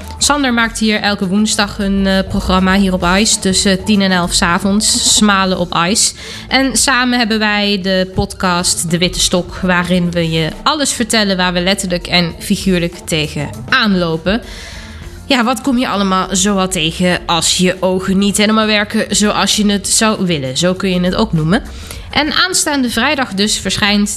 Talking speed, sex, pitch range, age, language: 170 wpm, female, 180-215 Hz, 20-39, Dutch